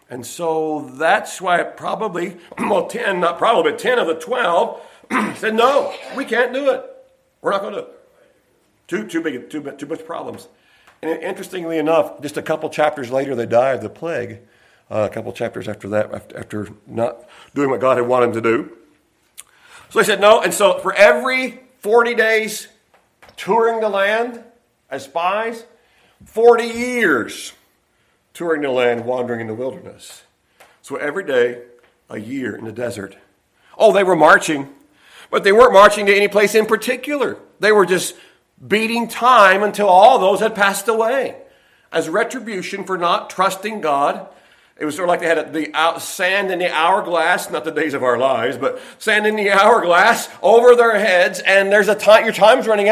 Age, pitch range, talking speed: 50-69, 150-225 Hz, 175 wpm